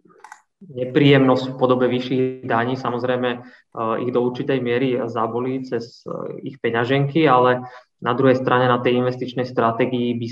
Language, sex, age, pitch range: Slovak, male, 20-39, 120-130 Hz